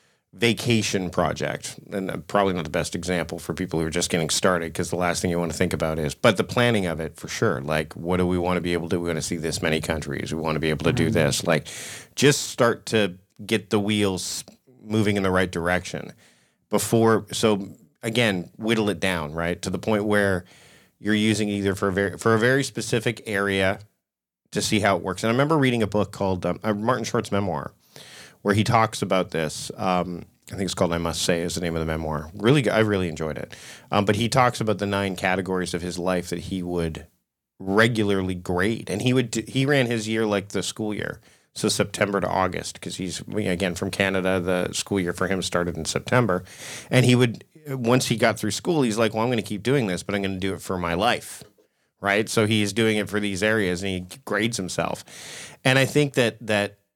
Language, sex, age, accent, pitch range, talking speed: English, male, 40-59, American, 90-110 Hz, 230 wpm